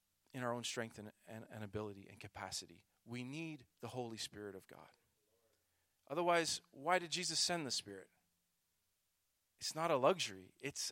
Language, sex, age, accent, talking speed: English, male, 40-59, American, 160 wpm